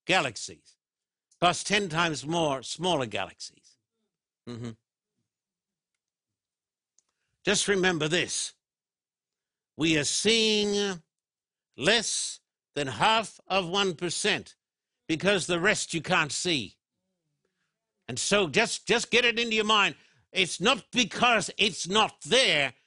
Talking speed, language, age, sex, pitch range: 110 wpm, English, 60-79, male, 160-210 Hz